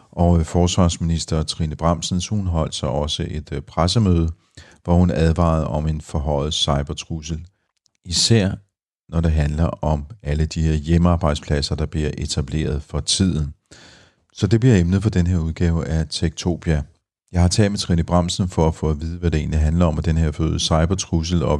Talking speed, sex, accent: 170 wpm, male, native